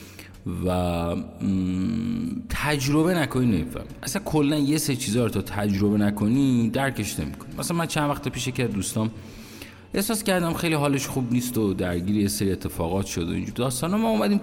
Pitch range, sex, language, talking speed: 100-150 Hz, male, Persian, 160 wpm